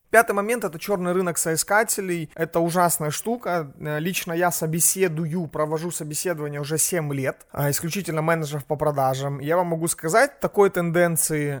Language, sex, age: Russian, male, 30-49